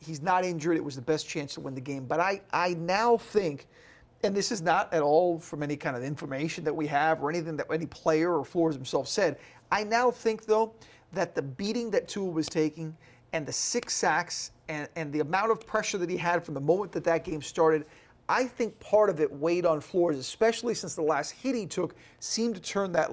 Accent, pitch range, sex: American, 155-200 Hz, male